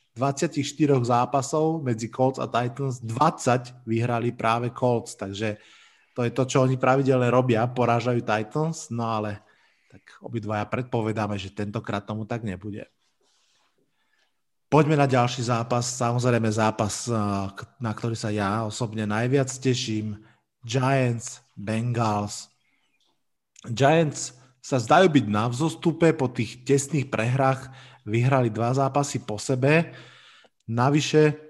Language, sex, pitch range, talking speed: Slovak, male, 115-135 Hz, 115 wpm